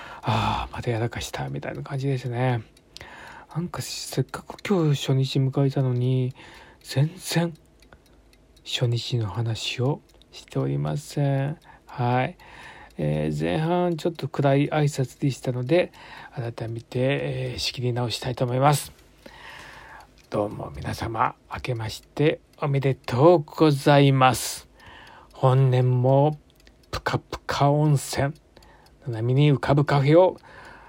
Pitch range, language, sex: 125-150 Hz, Japanese, male